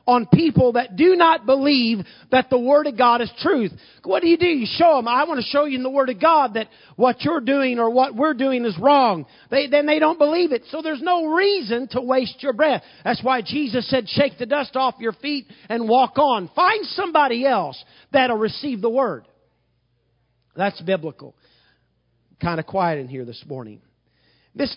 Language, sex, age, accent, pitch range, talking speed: English, male, 40-59, American, 210-270 Hz, 205 wpm